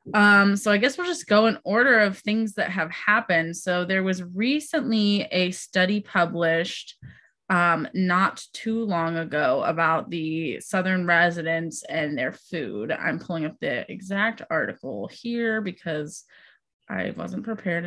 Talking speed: 150 wpm